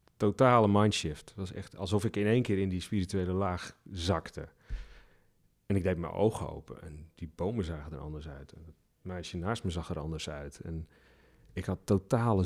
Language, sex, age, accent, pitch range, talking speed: Dutch, male, 40-59, Dutch, 85-110 Hz, 195 wpm